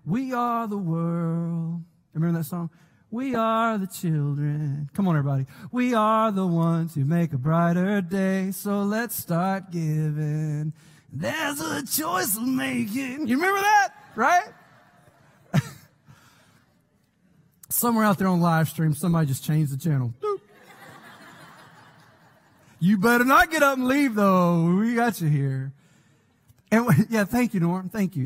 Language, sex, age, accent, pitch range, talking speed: English, male, 30-49, American, 140-190 Hz, 140 wpm